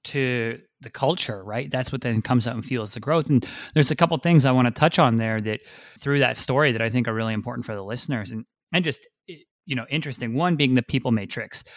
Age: 30-49